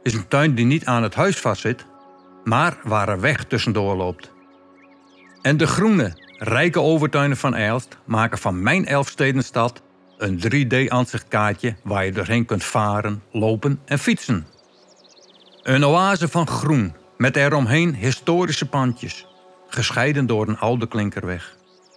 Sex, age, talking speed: male, 60-79, 140 wpm